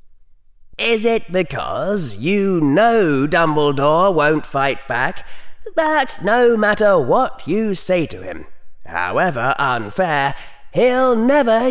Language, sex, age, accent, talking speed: English, male, 30-49, British, 110 wpm